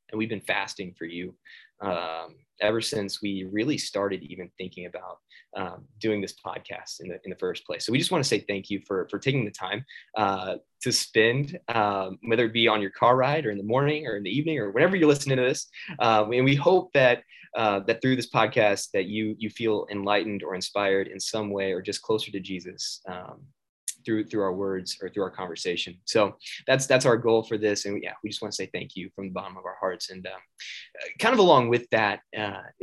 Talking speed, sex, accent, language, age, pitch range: 230 wpm, male, American, English, 20-39, 100-120 Hz